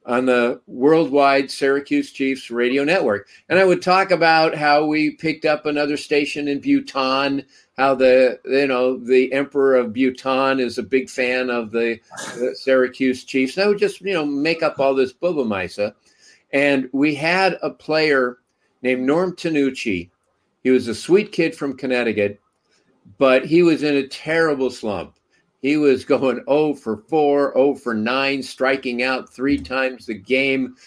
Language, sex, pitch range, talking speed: English, male, 130-155 Hz, 165 wpm